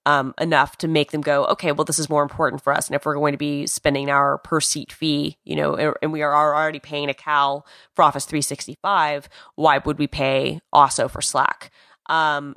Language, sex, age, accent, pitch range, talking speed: English, female, 20-39, American, 145-180 Hz, 220 wpm